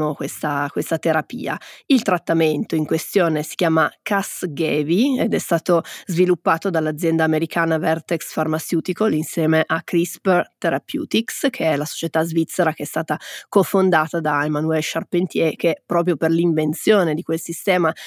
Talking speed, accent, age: 135 wpm, native, 30-49